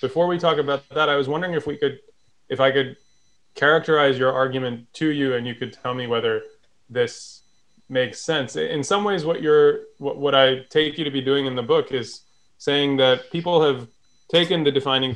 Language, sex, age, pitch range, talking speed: English, male, 20-39, 125-155 Hz, 200 wpm